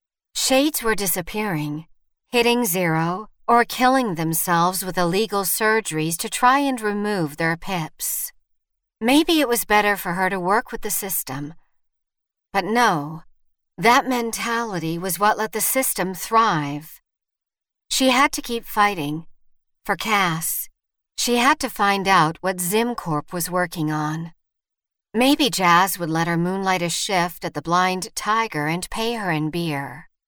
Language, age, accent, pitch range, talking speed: English, 50-69, American, 165-220 Hz, 145 wpm